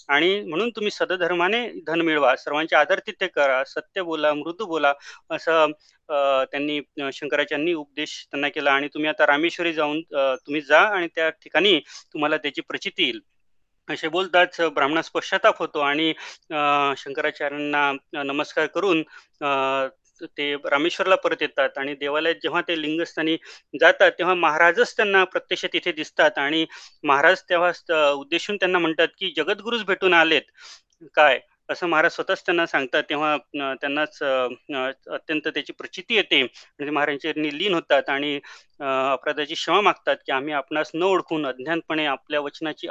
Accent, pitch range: native, 145-170 Hz